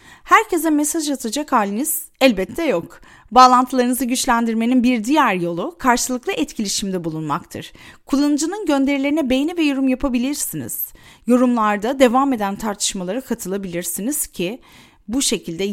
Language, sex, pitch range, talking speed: Turkish, female, 195-275 Hz, 105 wpm